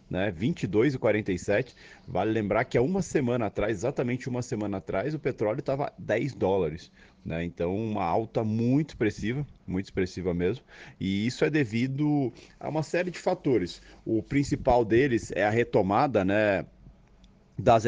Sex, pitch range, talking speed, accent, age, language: male, 95-120 Hz, 150 wpm, Brazilian, 40-59, Portuguese